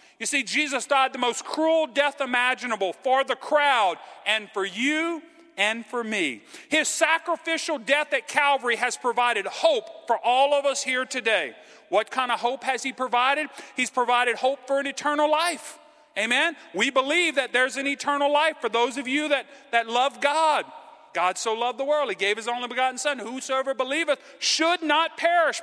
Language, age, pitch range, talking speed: English, 40-59, 245-305 Hz, 185 wpm